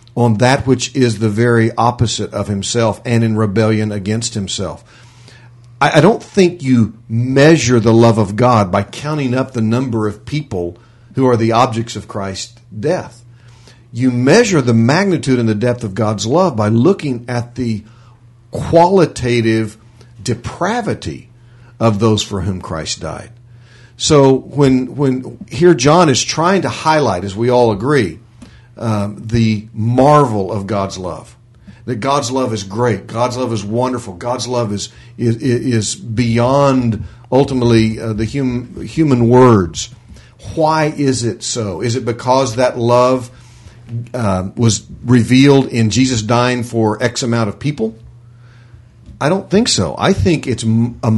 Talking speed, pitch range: 150 wpm, 110-130 Hz